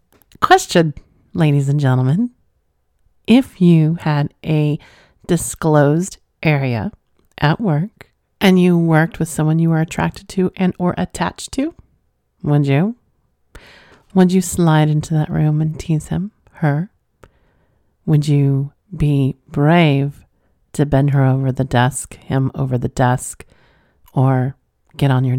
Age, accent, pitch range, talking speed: 40-59, American, 135-170 Hz, 130 wpm